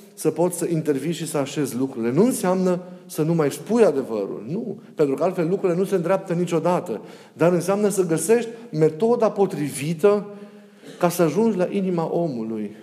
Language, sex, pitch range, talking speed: Romanian, male, 145-195 Hz, 170 wpm